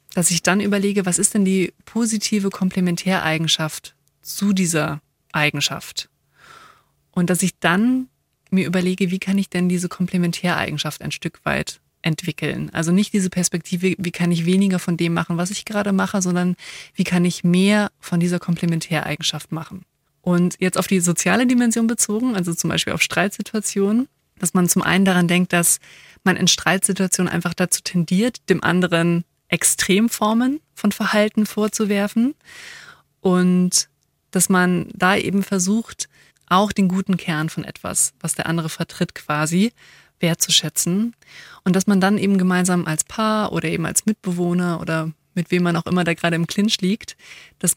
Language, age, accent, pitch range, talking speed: German, 20-39, German, 170-195 Hz, 160 wpm